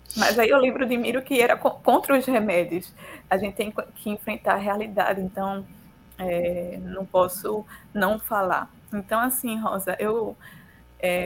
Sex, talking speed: female, 155 wpm